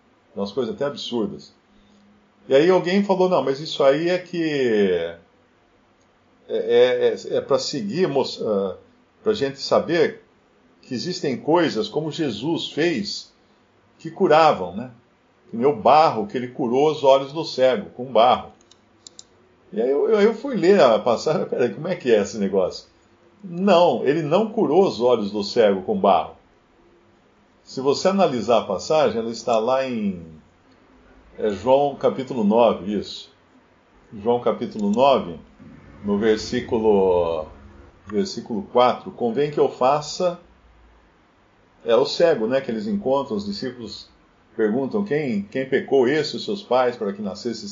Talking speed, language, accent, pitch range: 145 wpm, Portuguese, Brazilian, 120-195 Hz